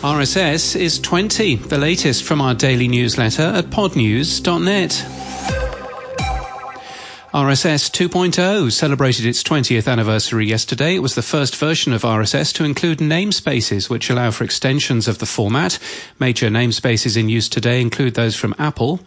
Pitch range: 120-160 Hz